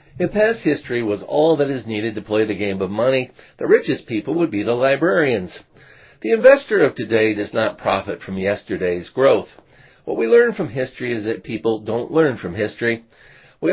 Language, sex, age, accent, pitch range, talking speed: English, male, 50-69, American, 105-145 Hz, 190 wpm